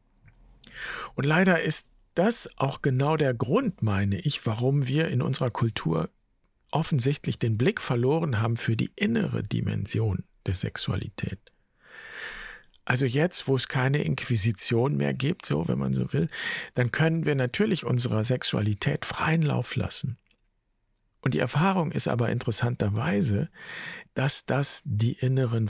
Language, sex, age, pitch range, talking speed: German, male, 50-69, 110-145 Hz, 135 wpm